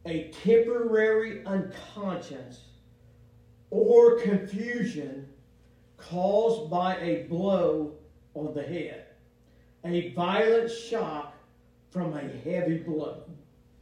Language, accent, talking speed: English, American, 85 wpm